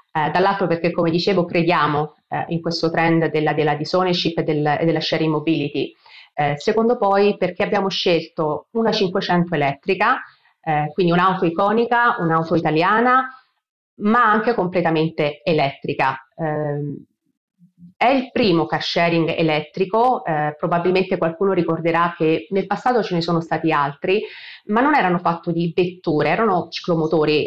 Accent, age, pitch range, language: native, 30-49, 165-205 Hz, Italian